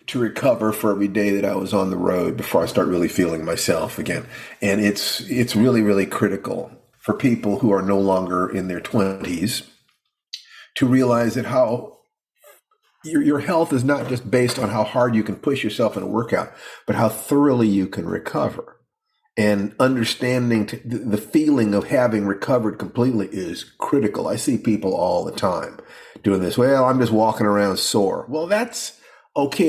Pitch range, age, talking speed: 100-130 Hz, 50-69, 175 wpm